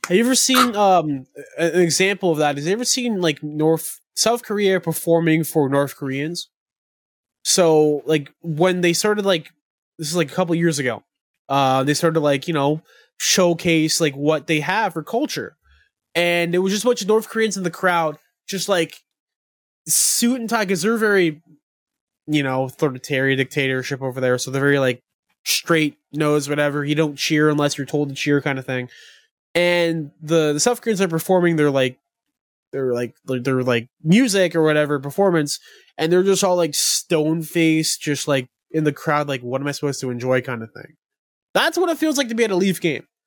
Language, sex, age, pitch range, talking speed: English, male, 20-39, 145-195 Hz, 195 wpm